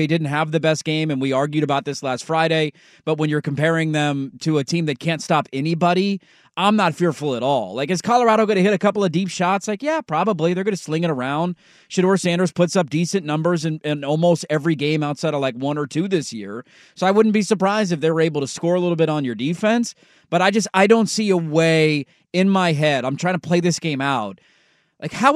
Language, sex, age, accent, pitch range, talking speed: English, male, 30-49, American, 150-190 Hz, 245 wpm